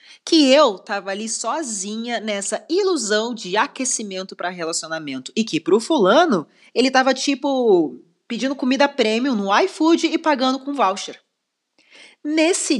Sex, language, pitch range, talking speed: female, Portuguese, 185-295 Hz, 130 wpm